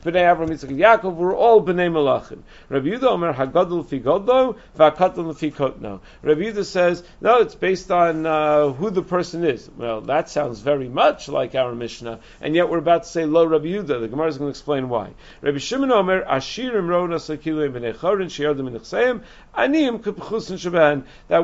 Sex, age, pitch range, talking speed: male, 50-69, 155-205 Hz, 155 wpm